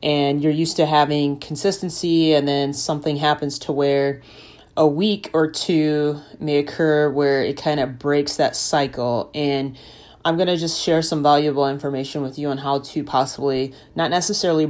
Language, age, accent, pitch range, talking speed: English, 30-49, American, 140-160 Hz, 170 wpm